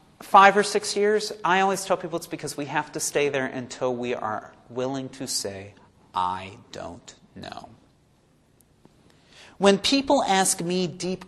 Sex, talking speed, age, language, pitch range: male, 155 wpm, 40-59, English, 135-195 Hz